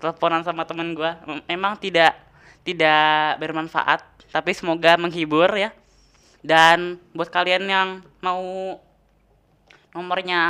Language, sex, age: Indonesian, female, 10-29